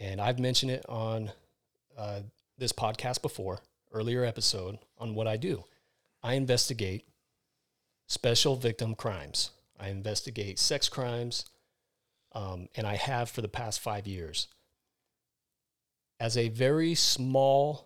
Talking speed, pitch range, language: 125 wpm, 110-130 Hz, English